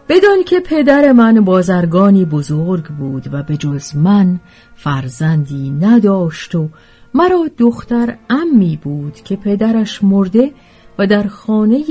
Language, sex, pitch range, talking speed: Persian, female, 150-250 Hz, 120 wpm